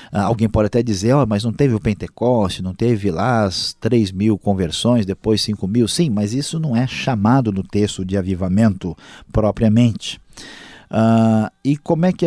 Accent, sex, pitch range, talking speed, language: Brazilian, male, 100-125 Hz, 175 wpm, Portuguese